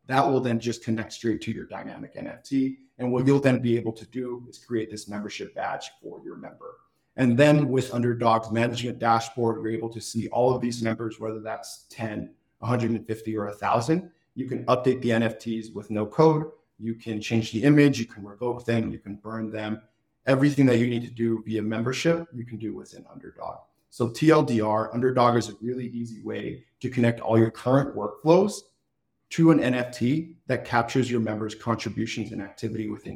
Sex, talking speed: male, 195 wpm